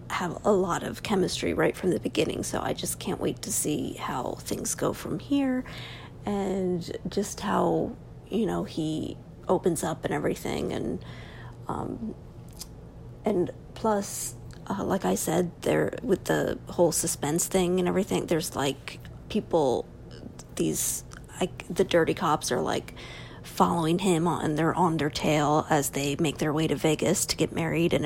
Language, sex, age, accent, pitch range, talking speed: English, female, 30-49, American, 155-200 Hz, 160 wpm